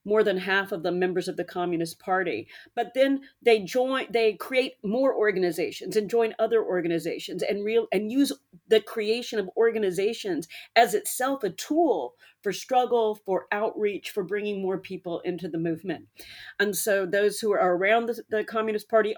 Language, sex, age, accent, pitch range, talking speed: English, female, 40-59, American, 195-235 Hz, 170 wpm